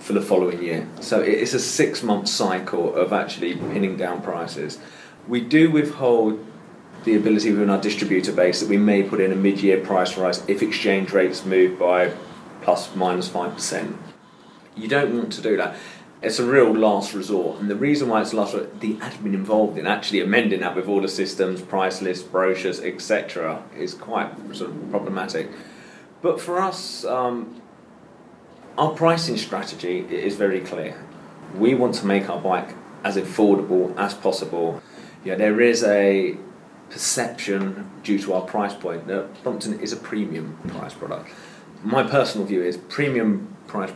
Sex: male